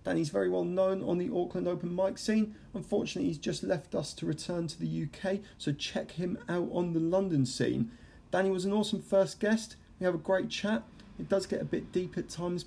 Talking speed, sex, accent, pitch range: 225 wpm, male, British, 135-180 Hz